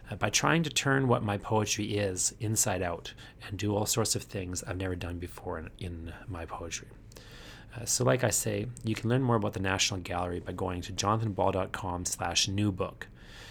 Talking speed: 195 wpm